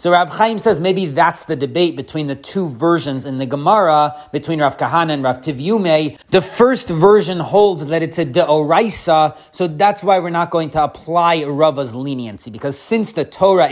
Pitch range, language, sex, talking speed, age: 150-185 Hz, English, male, 190 wpm, 30-49